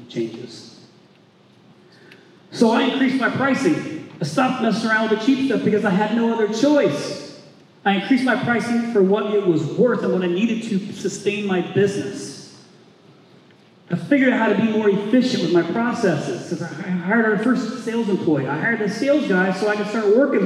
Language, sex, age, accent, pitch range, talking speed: English, male, 40-59, American, 175-225 Hz, 190 wpm